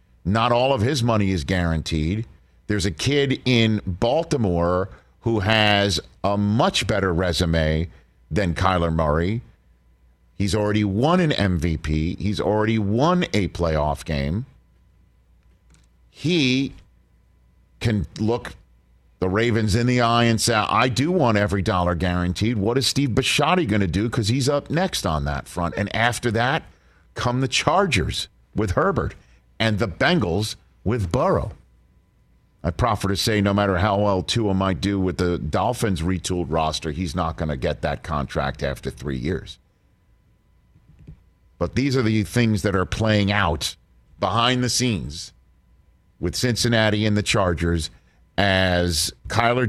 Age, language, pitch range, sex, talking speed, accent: 50-69, English, 85-115 Hz, male, 145 wpm, American